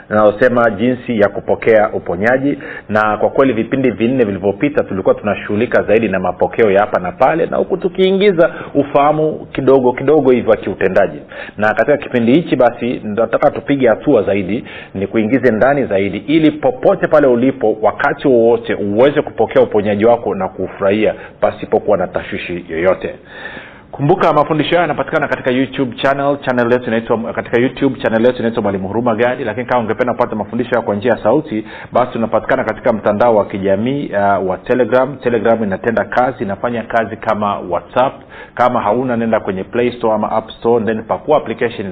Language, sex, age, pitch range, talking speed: Swahili, male, 40-59, 105-135 Hz, 160 wpm